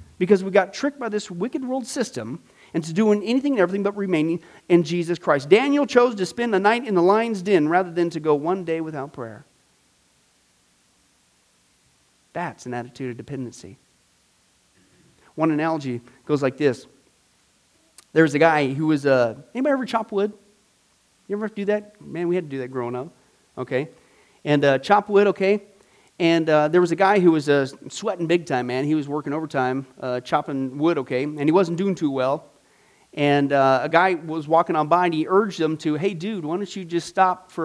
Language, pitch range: English, 135-185 Hz